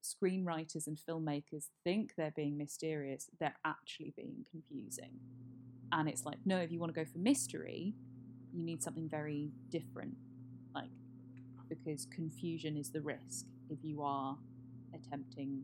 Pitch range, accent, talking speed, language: 125-160 Hz, British, 140 wpm, English